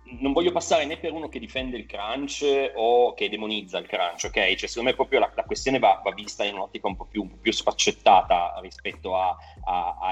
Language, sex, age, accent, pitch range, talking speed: Italian, male, 30-49, native, 100-140 Hz, 220 wpm